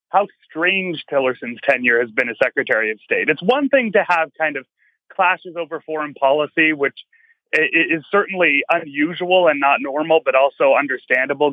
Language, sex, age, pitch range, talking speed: English, male, 30-49, 140-200 Hz, 160 wpm